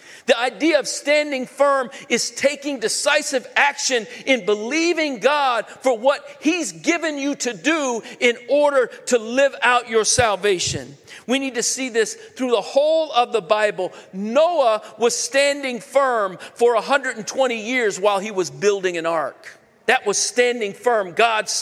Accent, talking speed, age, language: American, 155 wpm, 50-69, English